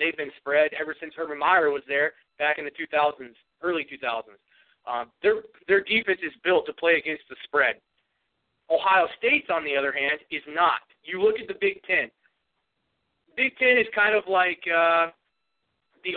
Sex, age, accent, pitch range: male, 30-49, American, 150-195 Hz